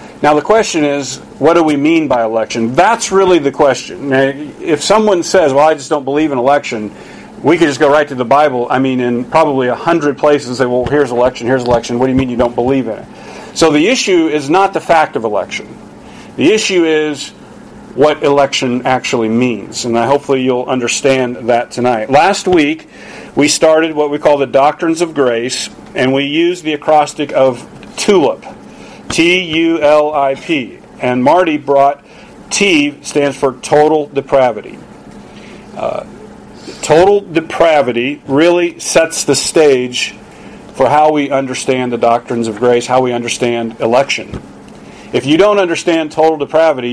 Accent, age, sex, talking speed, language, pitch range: American, 50-69, male, 165 wpm, English, 125-155 Hz